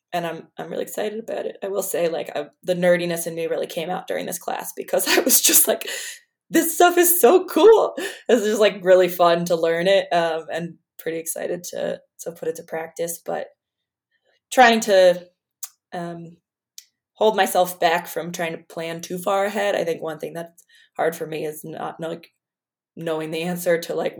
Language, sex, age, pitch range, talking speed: English, female, 20-39, 165-205 Hz, 200 wpm